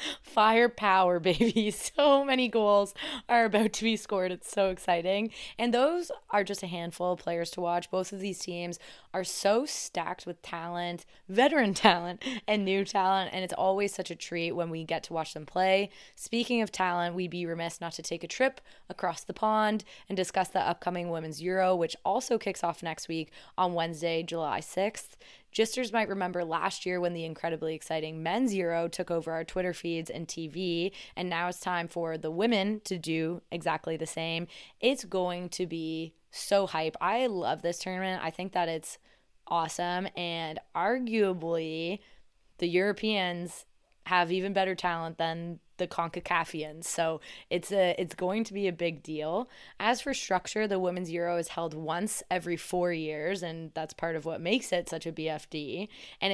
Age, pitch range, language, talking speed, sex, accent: 20-39, 165-200 Hz, English, 180 wpm, female, American